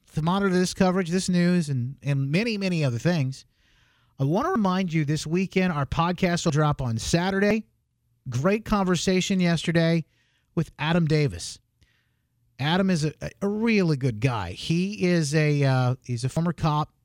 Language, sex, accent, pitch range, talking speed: English, male, American, 125-175 Hz, 160 wpm